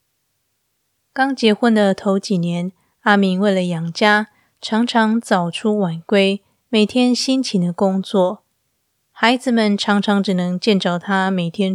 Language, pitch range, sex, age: Chinese, 180-215 Hz, female, 20-39